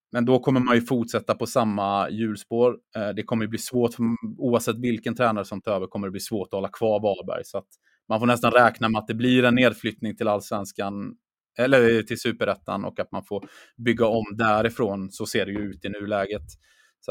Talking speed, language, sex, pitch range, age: 210 wpm, Swedish, male, 100-120 Hz, 20-39